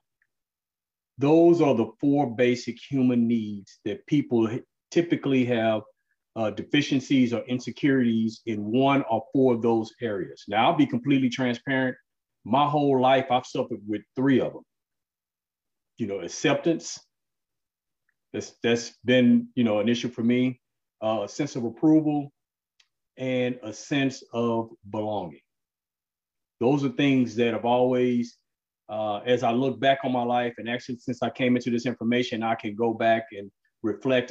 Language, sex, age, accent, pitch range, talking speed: English, male, 40-59, American, 110-130 Hz, 145 wpm